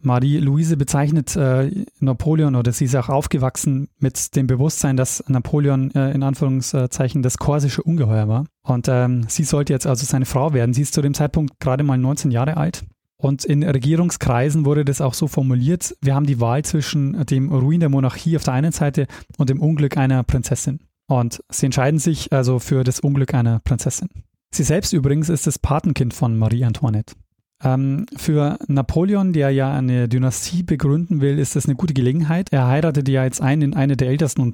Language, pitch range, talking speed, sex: German, 130-150 Hz, 185 wpm, male